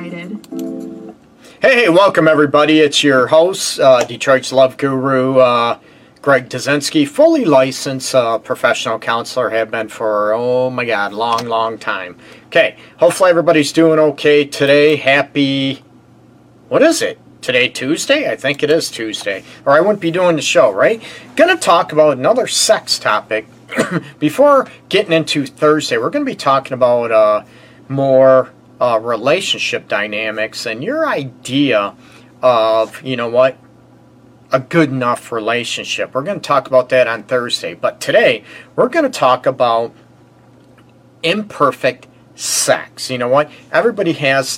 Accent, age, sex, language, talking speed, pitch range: American, 40-59, male, English, 145 wpm, 125-150 Hz